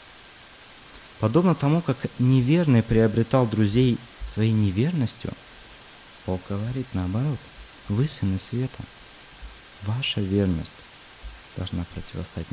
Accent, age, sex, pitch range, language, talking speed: native, 20-39, male, 90-125 Hz, Russian, 85 wpm